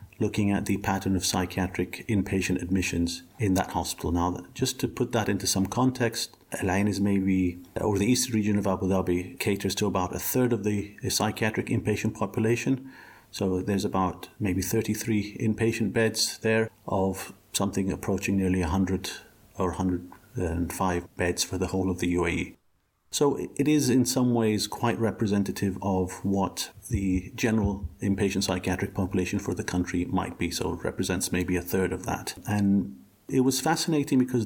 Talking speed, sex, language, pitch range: 165 wpm, male, English, 90-110 Hz